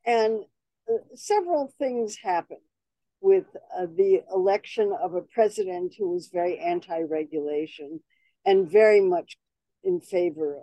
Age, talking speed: 60-79, 120 wpm